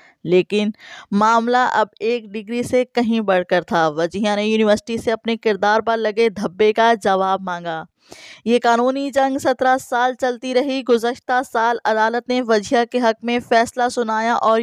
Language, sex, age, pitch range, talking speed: Urdu, female, 20-39, 210-245 Hz, 165 wpm